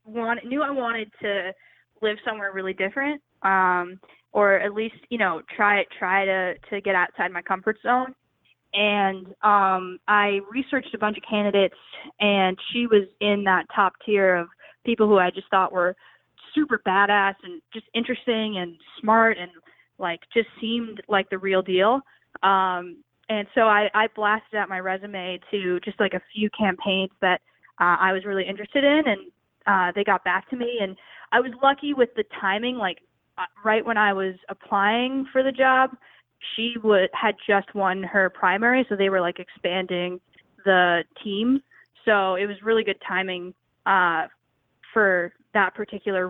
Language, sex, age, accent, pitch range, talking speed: English, female, 10-29, American, 190-230 Hz, 170 wpm